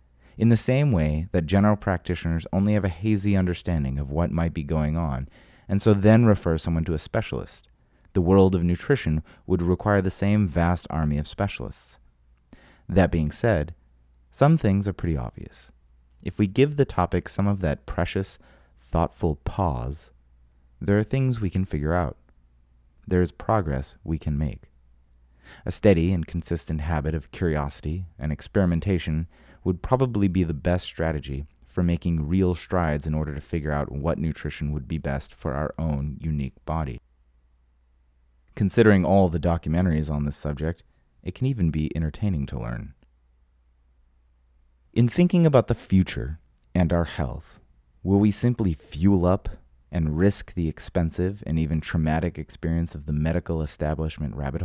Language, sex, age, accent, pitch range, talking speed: English, male, 30-49, American, 70-95 Hz, 160 wpm